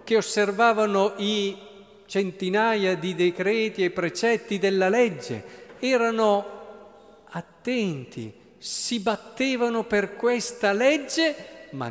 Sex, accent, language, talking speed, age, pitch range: male, native, Italian, 90 wpm, 50-69, 165-230 Hz